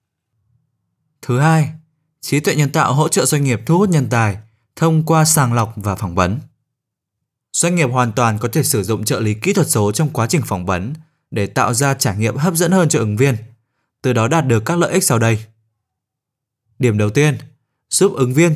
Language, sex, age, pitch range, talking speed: Vietnamese, male, 20-39, 110-155 Hz, 210 wpm